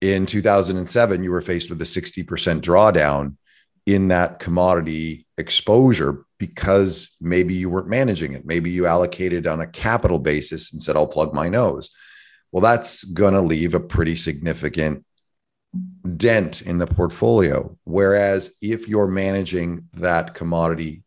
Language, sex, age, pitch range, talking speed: English, male, 40-59, 85-95 Hz, 140 wpm